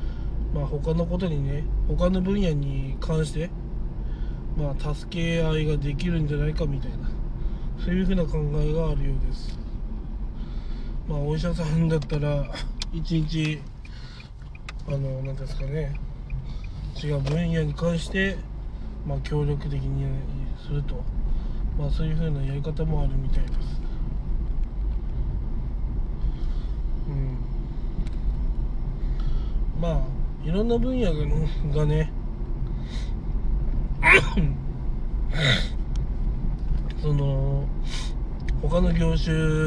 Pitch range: 135-160 Hz